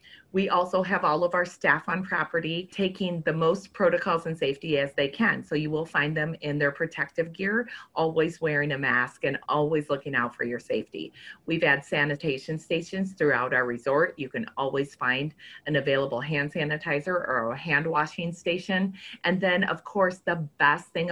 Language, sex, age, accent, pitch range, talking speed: English, female, 30-49, American, 140-180 Hz, 185 wpm